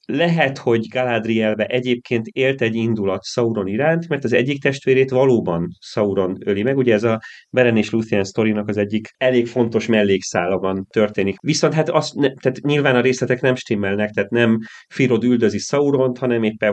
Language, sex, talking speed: Hungarian, male, 165 wpm